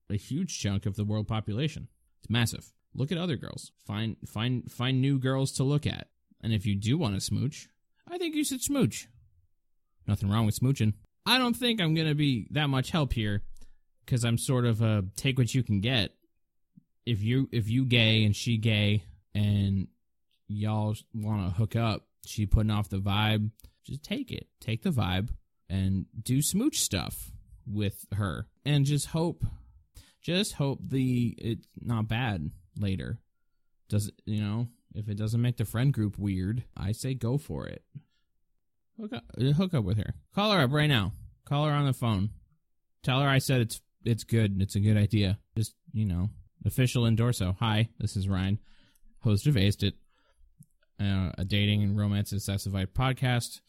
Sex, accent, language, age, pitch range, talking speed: male, American, English, 20-39, 100-130 Hz, 185 wpm